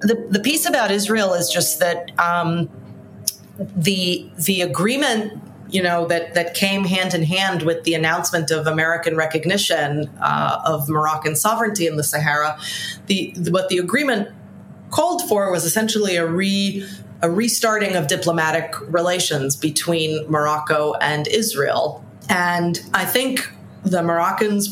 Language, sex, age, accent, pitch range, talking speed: Swedish, female, 30-49, American, 160-195 Hz, 140 wpm